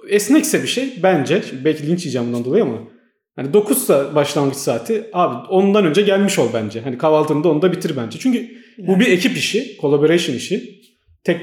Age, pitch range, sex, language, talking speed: 40-59, 140-195 Hz, male, Turkish, 175 wpm